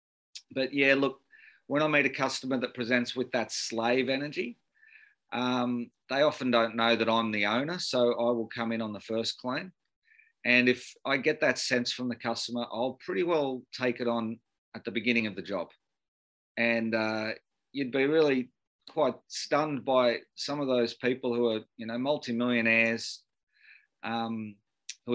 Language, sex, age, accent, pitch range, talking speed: English, male, 40-59, Australian, 115-130 Hz, 170 wpm